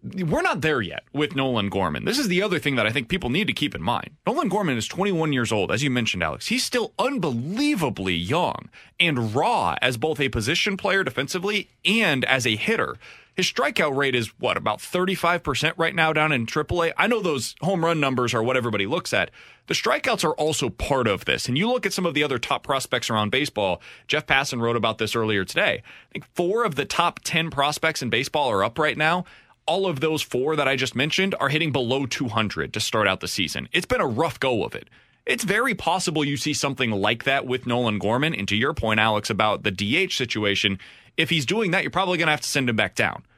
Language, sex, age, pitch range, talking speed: English, male, 30-49, 115-165 Hz, 230 wpm